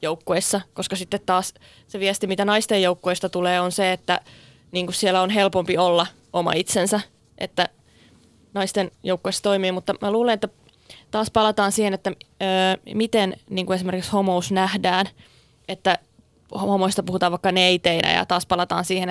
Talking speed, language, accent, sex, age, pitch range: 150 wpm, Finnish, native, female, 20-39, 180-195 Hz